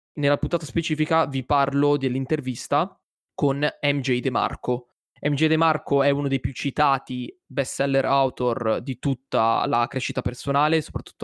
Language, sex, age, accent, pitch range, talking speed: Italian, male, 20-39, native, 125-145 Hz, 130 wpm